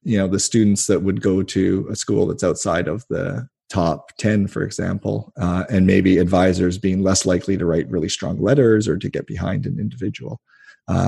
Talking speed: 200 wpm